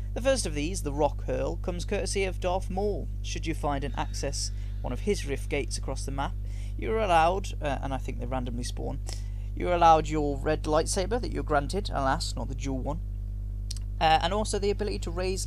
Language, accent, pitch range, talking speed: English, British, 100-135 Hz, 215 wpm